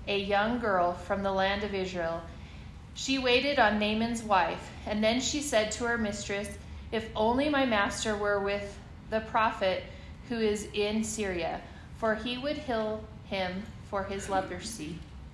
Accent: American